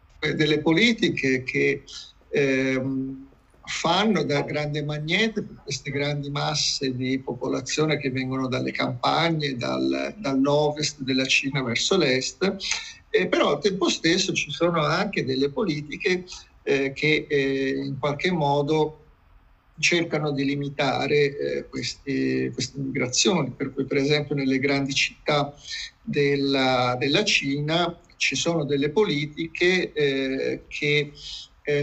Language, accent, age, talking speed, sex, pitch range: Italian, native, 50-69, 120 wpm, male, 130-150 Hz